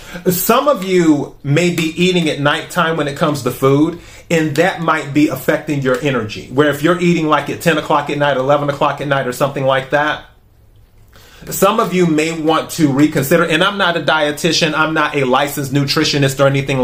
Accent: American